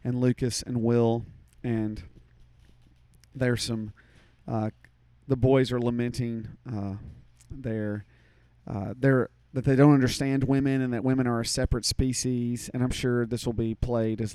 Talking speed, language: 155 wpm, English